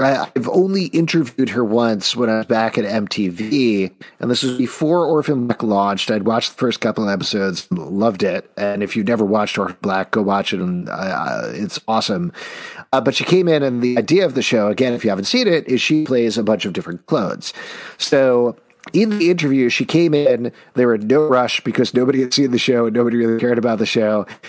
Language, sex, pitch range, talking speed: English, male, 110-140 Hz, 225 wpm